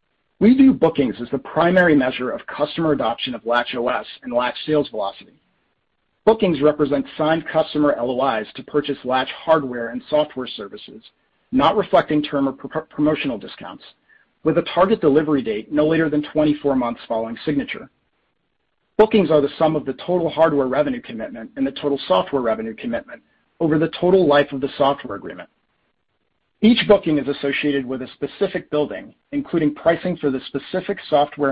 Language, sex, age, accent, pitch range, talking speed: English, male, 40-59, American, 135-170 Hz, 160 wpm